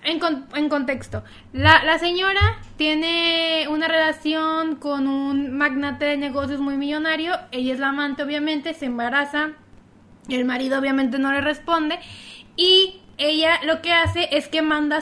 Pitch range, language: 275-335 Hz, Spanish